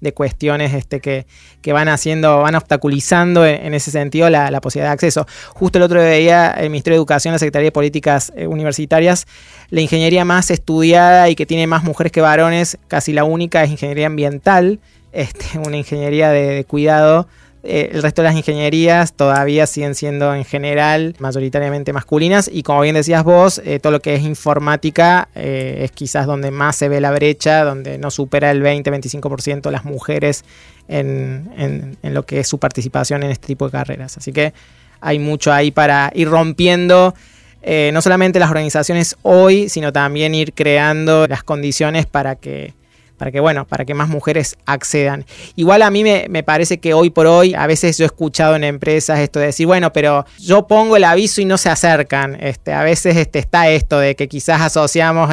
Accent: Argentinian